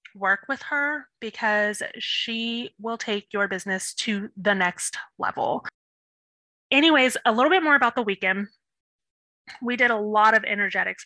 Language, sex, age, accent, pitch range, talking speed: English, female, 20-39, American, 195-230 Hz, 145 wpm